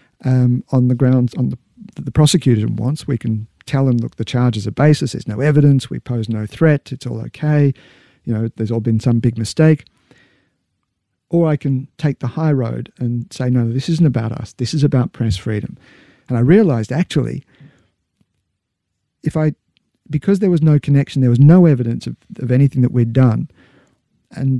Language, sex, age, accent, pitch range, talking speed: English, male, 50-69, Australian, 115-140 Hz, 190 wpm